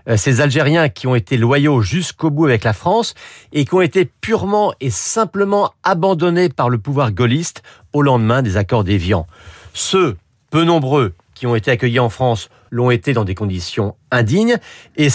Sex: male